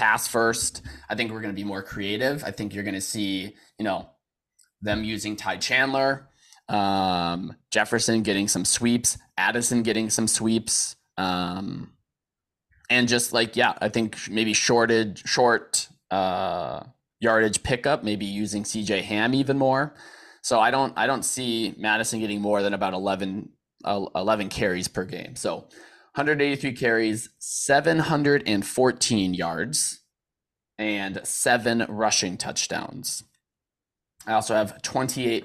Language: English